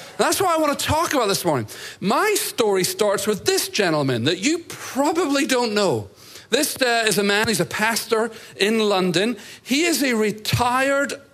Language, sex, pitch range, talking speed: English, male, 180-260 Hz, 180 wpm